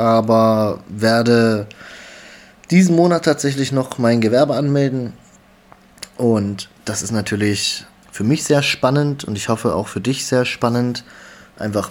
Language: German